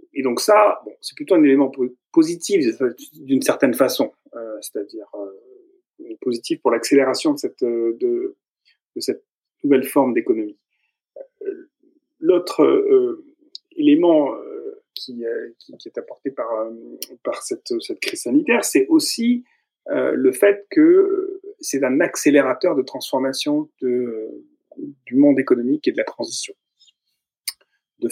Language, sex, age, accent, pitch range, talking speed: French, male, 30-49, French, 240-385 Hz, 125 wpm